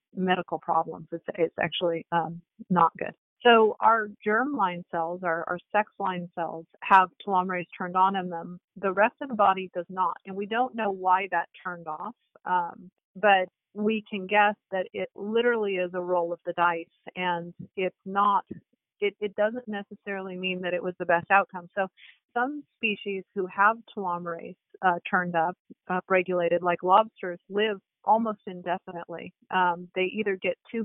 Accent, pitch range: American, 175-200 Hz